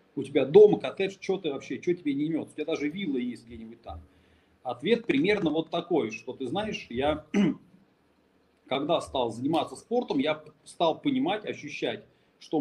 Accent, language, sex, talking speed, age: native, Russian, male, 165 wpm, 30-49